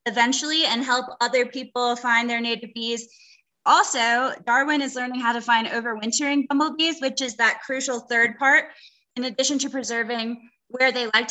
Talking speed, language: 165 wpm, English